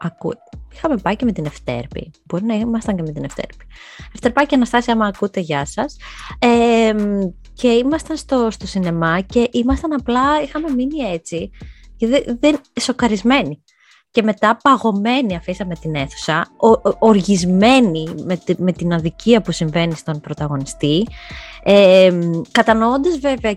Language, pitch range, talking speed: Greek, 160-235 Hz, 125 wpm